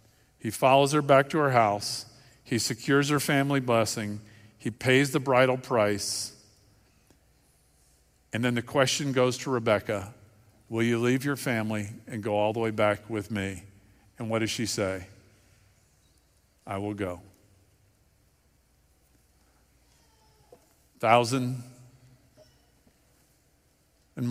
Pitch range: 100-125 Hz